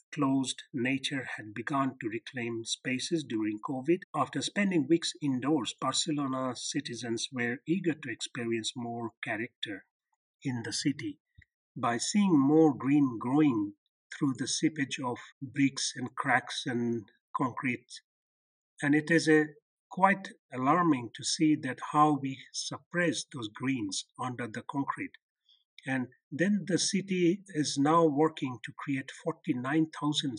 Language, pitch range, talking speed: English, 125-160 Hz, 125 wpm